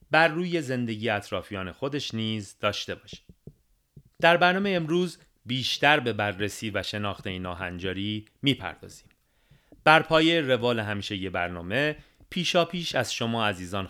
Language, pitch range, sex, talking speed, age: Persian, 100-145 Hz, male, 125 wpm, 40-59